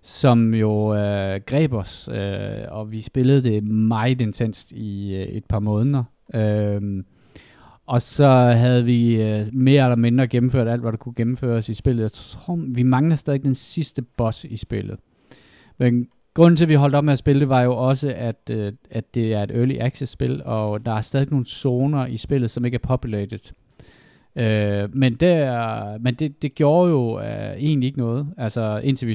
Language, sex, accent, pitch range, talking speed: Danish, male, native, 110-130 Hz, 190 wpm